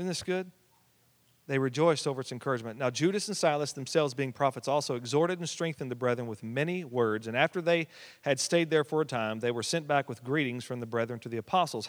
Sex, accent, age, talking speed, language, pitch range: male, American, 40-59, 225 wpm, English, 125-170 Hz